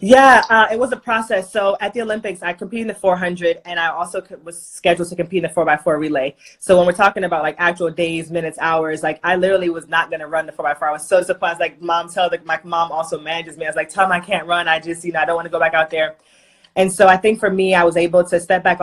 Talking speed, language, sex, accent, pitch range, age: 295 wpm, English, female, American, 155-180 Hz, 20-39